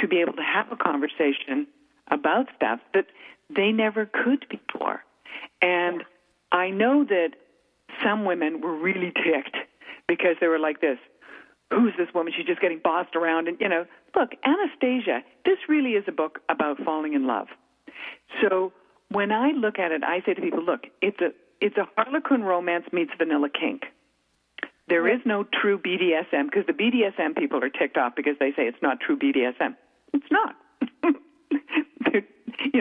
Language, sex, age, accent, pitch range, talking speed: English, female, 50-69, American, 155-255 Hz, 165 wpm